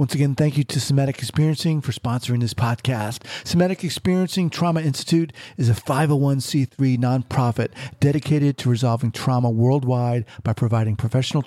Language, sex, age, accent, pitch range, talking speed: English, male, 50-69, American, 120-145 Hz, 140 wpm